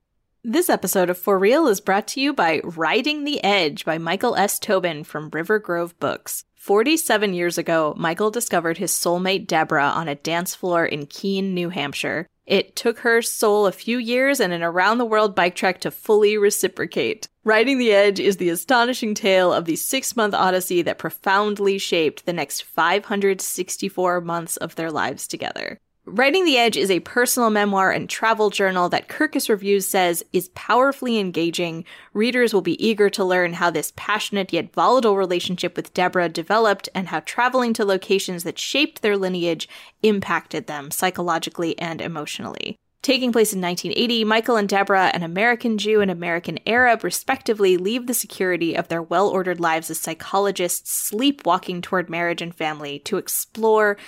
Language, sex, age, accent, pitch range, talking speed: English, female, 20-39, American, 170-220 Hz, 165 wpm